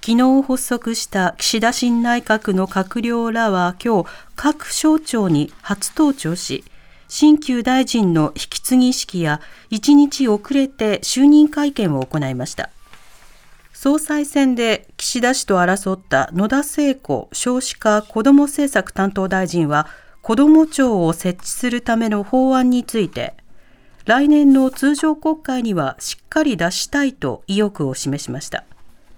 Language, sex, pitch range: Japanese, female, 190-280 Hz